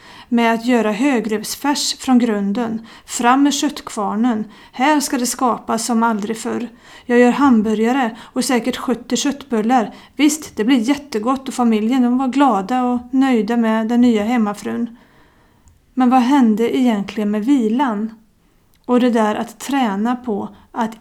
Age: 30-49